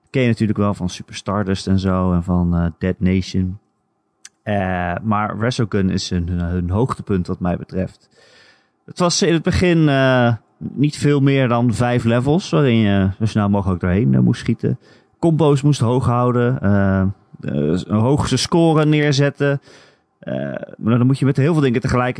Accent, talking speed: Dutch, 170 wpm